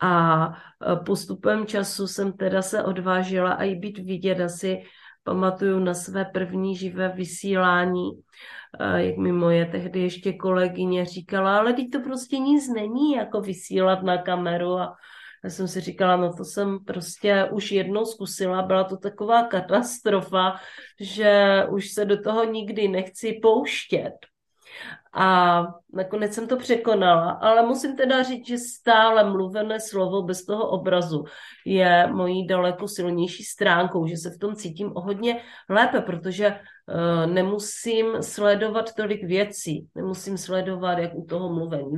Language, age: Czech, 30-49